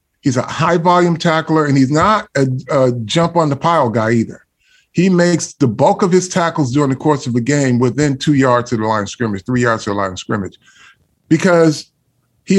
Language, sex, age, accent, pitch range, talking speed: English, male, 40-59, American, 120-155 Hz, 200 wpm